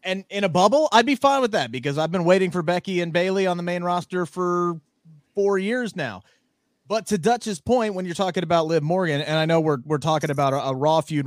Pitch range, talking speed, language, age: 150-195 Hz, 245 wpm, English, 30-49